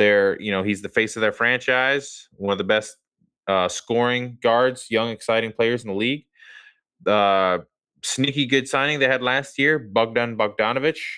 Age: 20-39